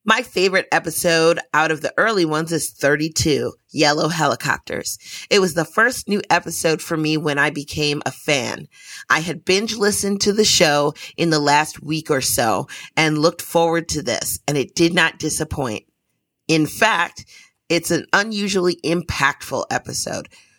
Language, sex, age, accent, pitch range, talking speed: English, female, 30-49, American, 150-180 Hz, 160 wpm